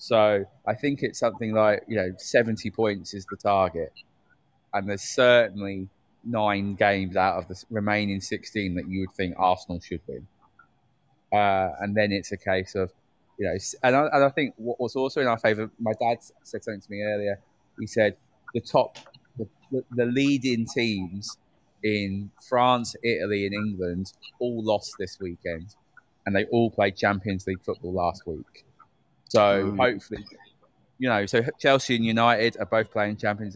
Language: English